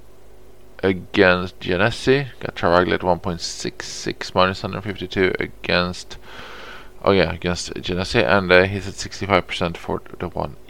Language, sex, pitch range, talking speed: English, male, 90-100 Hz, 120 wpm